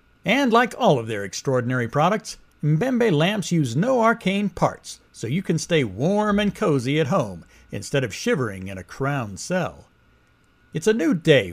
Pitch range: 125-200 Hz